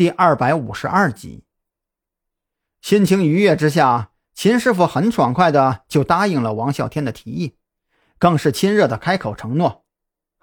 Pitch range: 130-180 Hz